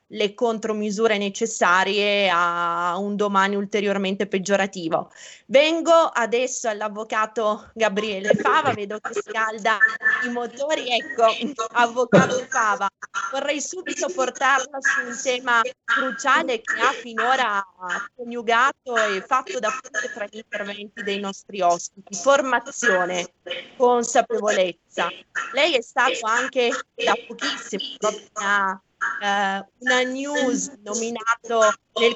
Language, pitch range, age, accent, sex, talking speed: Italian, 205-265 Hz, 20-39, native, female, 105 wpm